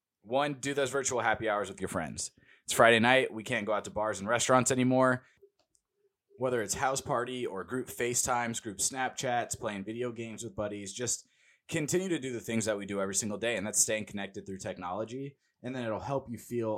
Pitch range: 100-125 Hz